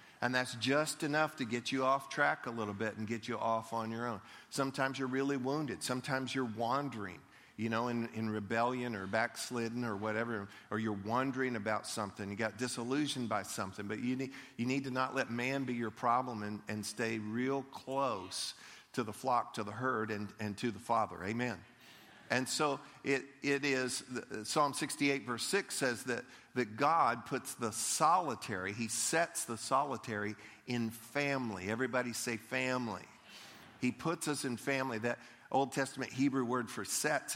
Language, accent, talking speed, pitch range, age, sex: English, American, 175 wpm, 110-135 Hz, 50-69, male